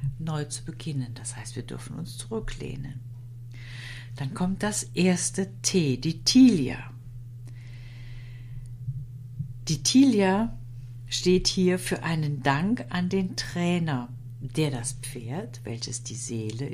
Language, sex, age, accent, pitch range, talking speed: German, female, 60-79, German, 120-155 Hz, 115 wpm